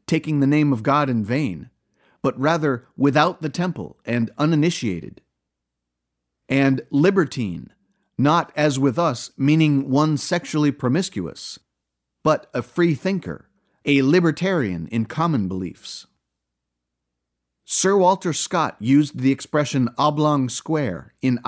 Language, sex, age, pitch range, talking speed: English, male, 50-69, 105-160 Hz, 115 wpm